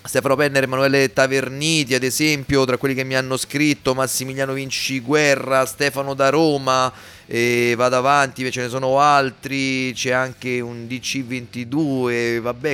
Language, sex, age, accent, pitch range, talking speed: Italian, male, 30-49, native, 110-140 Hz, 140 wpm